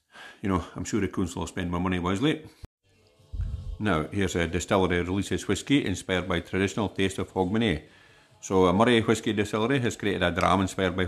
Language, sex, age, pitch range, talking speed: English, male, 50-69, 90-105 Hz, 190 wpm